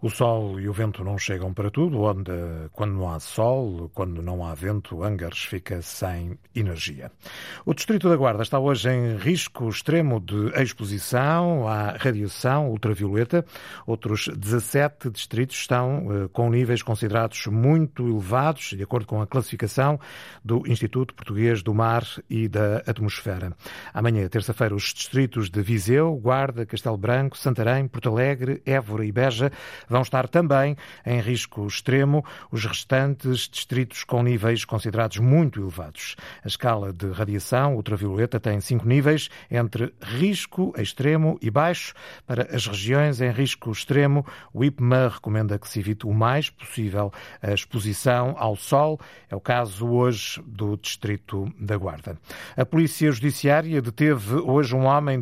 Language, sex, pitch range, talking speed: Portuguese, male, 105-135 Hz, 145 wpm